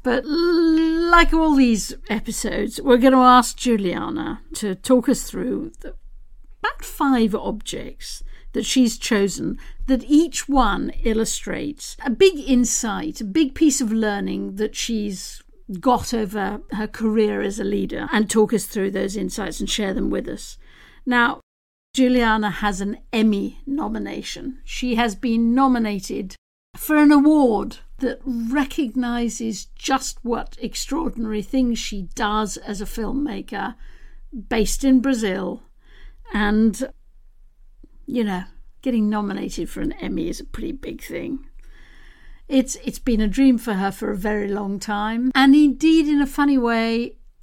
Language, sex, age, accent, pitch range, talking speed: English, female, 50-69, British, 210-265 Hz, 140 wpm